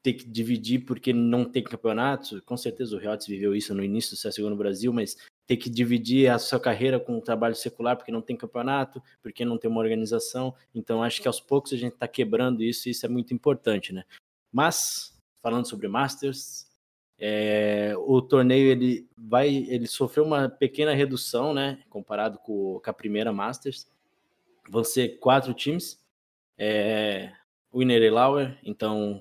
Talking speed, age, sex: 175 wpm, 20-39, male